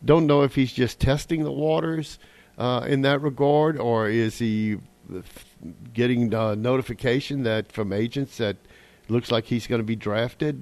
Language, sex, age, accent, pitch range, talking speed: English, male, 50-69, American, 105-130 Hz, 175 wpm